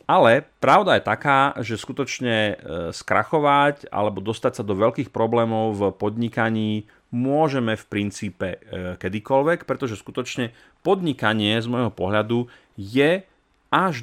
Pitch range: 100-125 Hz